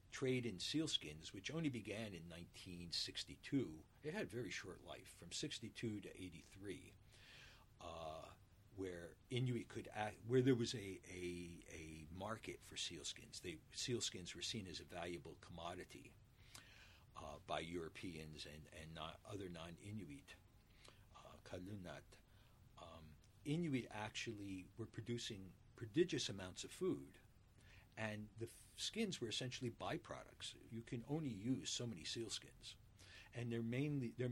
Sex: male